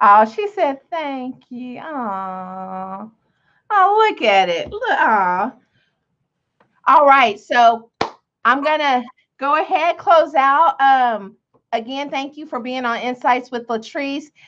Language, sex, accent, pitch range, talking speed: English, female, American, 230-300 Hz, 130 wpm